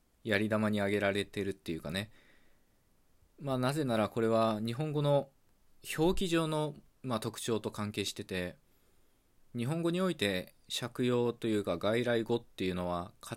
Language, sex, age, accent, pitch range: Japanese, male, 20-39, native, 95-125 Hz